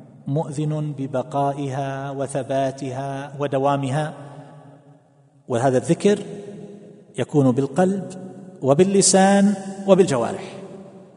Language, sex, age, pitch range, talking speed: Arabic, male, 40-59, 135-165 Hz, 55 wpm